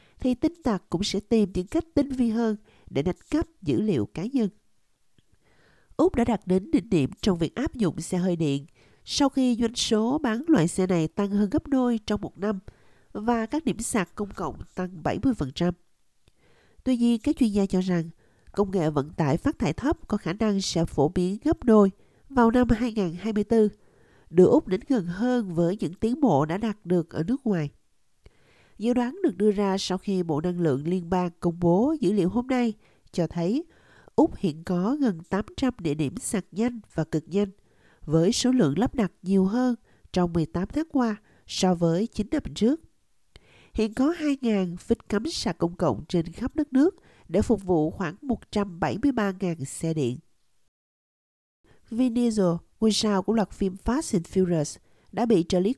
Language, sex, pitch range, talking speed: Vietnamese, female, 175-240 Hz, 185 wpm